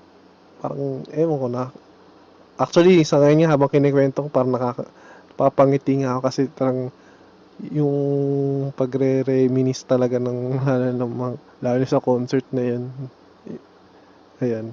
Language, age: Filipino, 20-39